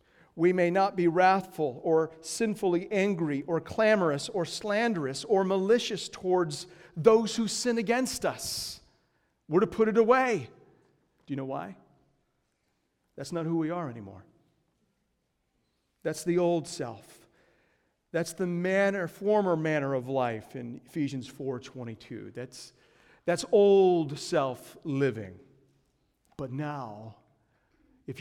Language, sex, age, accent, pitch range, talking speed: English, male, 50-69, American, 130-180 Hz, 120 wpm